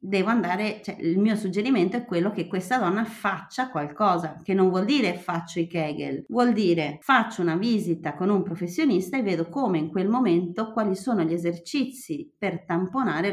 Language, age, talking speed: Italian, 30-49, 180 wpm